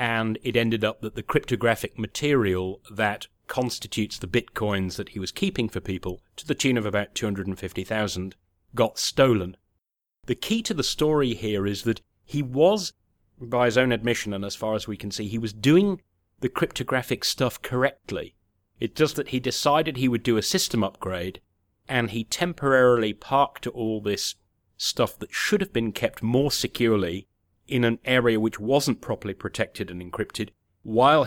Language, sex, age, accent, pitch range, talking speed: English, male, 30-49, British, 100-125 Hz, 170 wpm